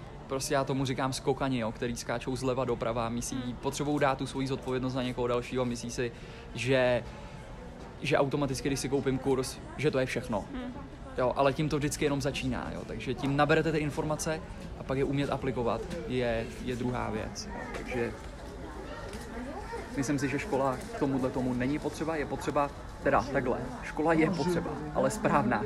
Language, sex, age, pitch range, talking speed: Czech, male, 20-39, 120-140 Hz, 175 wpm